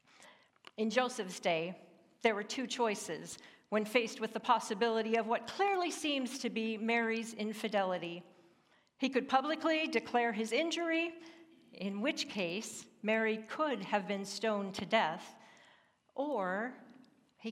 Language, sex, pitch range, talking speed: English, female, 205-255 Hz, 130 wpm